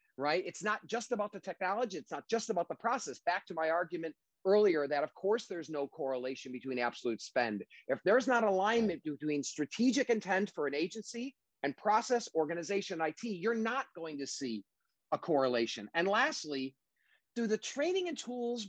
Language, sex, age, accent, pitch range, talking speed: English, male, 40-59, American, 150-220 Hz, 175 wpm